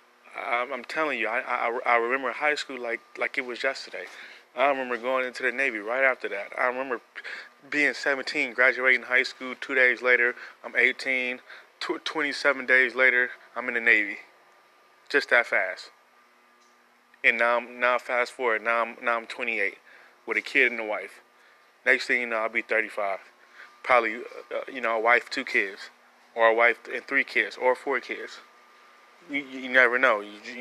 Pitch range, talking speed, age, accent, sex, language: 110-125 Hz, 175 wpm, 20-39, American, male, English